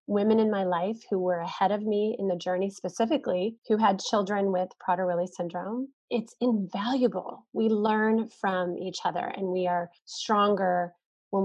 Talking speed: 160 wpm